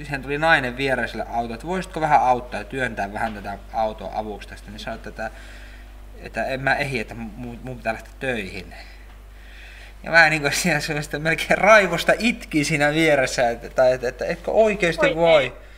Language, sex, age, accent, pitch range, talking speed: Finnish, male, 20-39, native, 110-150 Hz, 170 wpm